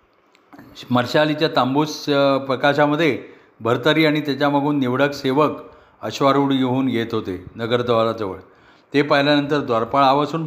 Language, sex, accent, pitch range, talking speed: Marathi, male, native, 135-160 Hz, 105 wpm